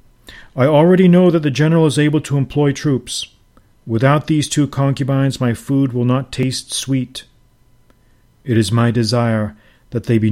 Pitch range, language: 110-130 Hz, English